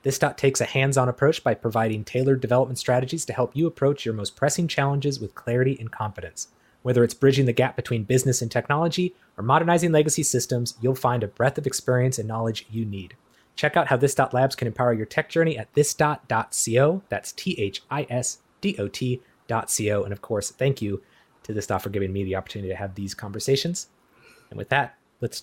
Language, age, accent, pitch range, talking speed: English, 20-39, American, 120-150 Hz, 215 wpm